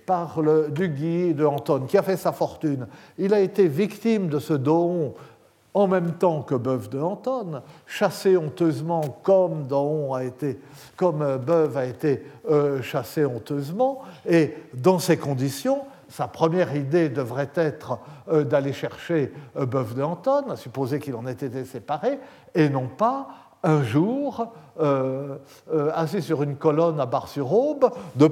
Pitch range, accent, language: 140-195 Hz, French, French